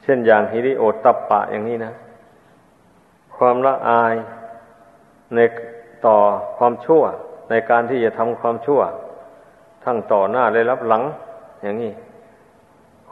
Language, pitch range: Thai, 115-130 Hz